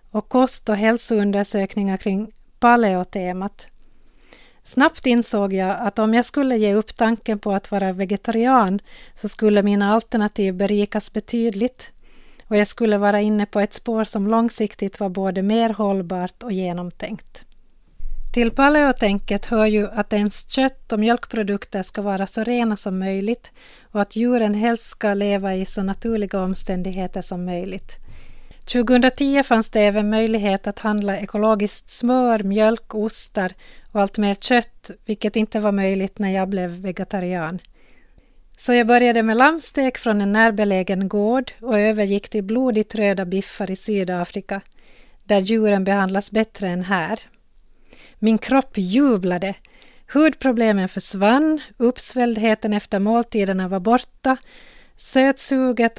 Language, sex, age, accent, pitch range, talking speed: Finnish, female, 40-59, Swedish, 200-235 Hz, 135 wpm